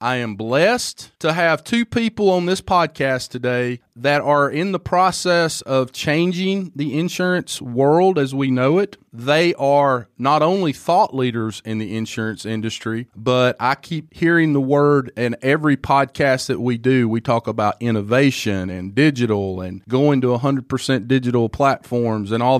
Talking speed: 160 wpm